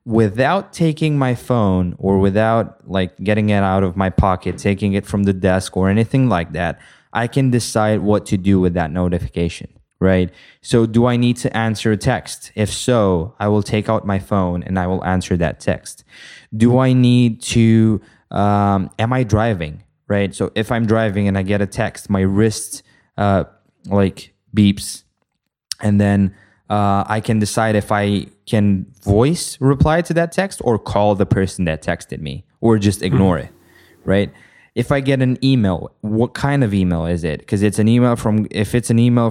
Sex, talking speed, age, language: male, 190 wpm, 20-39, English